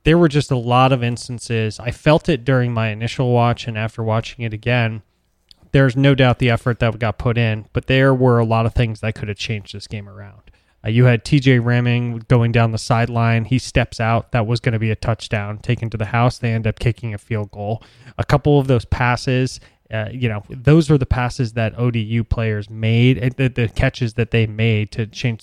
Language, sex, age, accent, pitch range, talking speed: English, male, 20-39, American, 110-125 Hz, 225 wpm